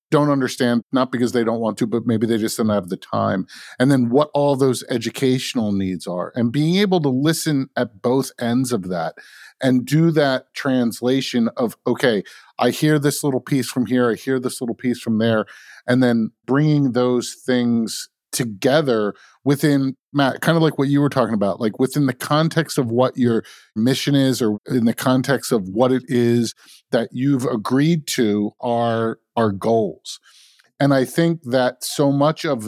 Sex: male